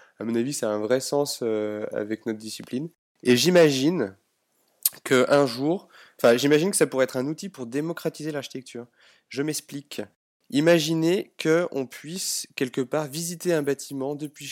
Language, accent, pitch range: French, French, 115-145 Hz